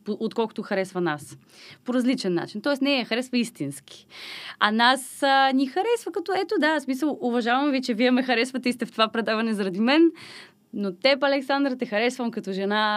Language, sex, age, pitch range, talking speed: Bulgarian, female, 20-39, 200-270 Hz, 190 wpm